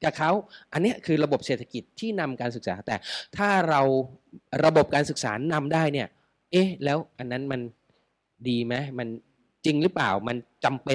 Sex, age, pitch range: male, 20-39, 120-165 Hz